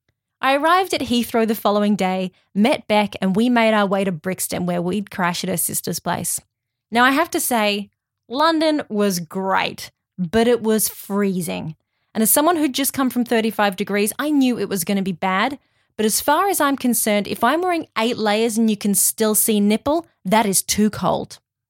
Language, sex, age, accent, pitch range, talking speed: English, female, 20-39, Australian, 200-275 Hz, 200 wpm